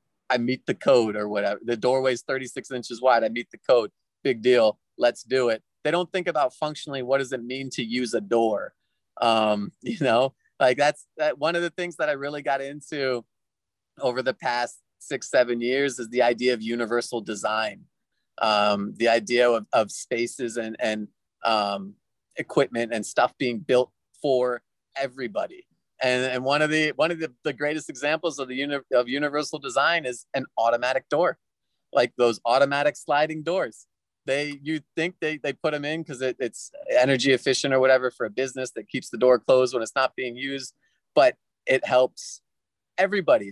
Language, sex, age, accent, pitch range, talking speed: English, male, 30-49, American, 120-150 Hz, 185 wpm